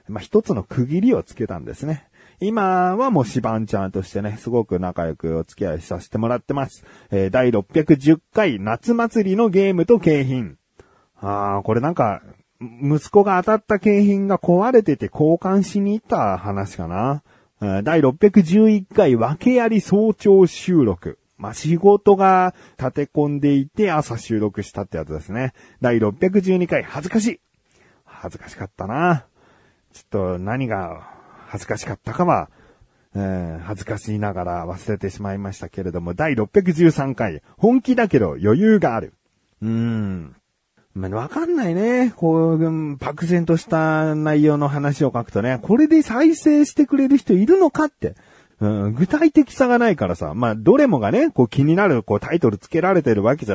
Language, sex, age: Japanese, male, 40-59